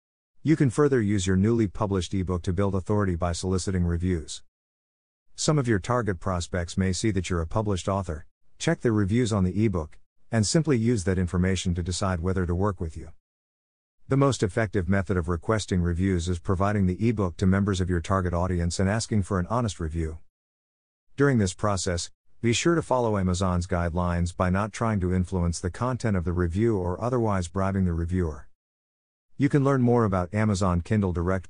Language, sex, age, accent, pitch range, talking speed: English, male, 50-69, American, 85-110 Hz, 190 wpm